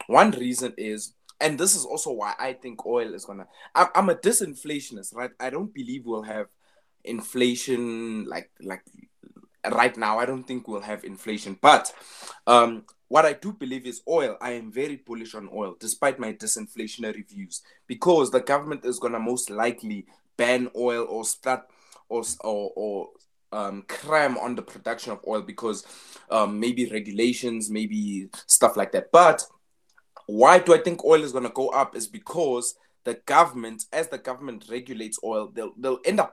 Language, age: English, 20-39